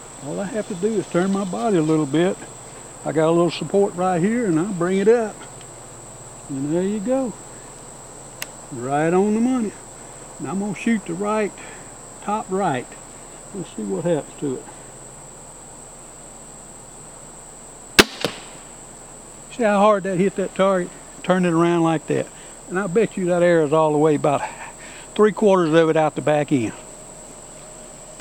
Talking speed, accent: 165 wpm, American